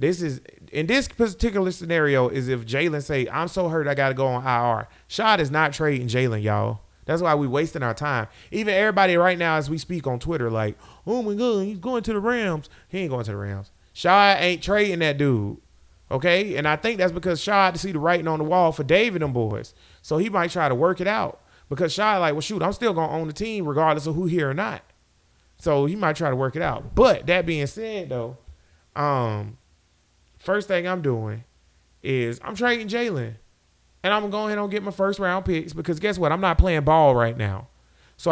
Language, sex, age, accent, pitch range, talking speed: English, male, 30-49, American, 130-195 Hz, 230 wpm